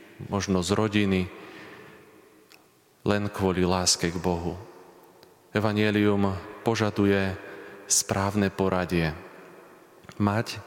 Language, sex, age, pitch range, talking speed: Slovak, male, 30-49, 95-100 Hz, 75 wpm